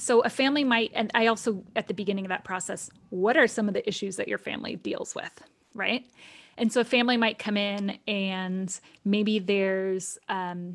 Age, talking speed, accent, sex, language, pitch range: 20-39, 195 wpm, American, female, English, 190-225 Hz